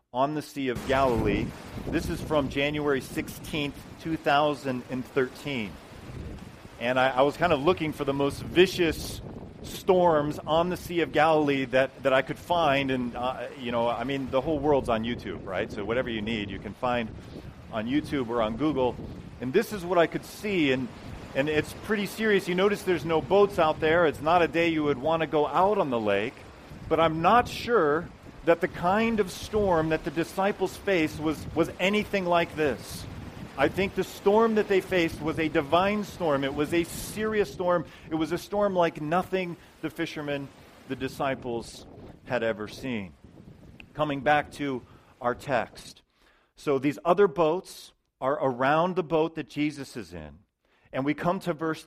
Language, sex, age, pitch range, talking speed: English, male, 40-59, 130-170 Hz, 185 wpm